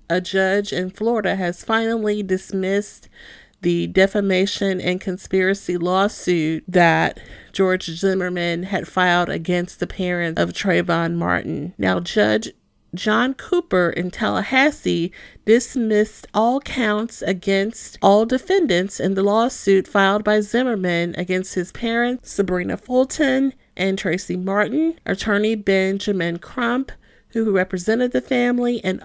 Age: 40-59